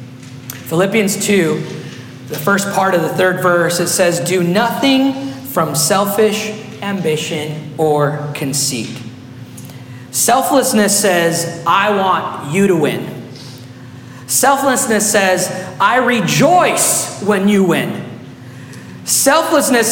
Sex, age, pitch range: male, 40-59, 160-235 Hz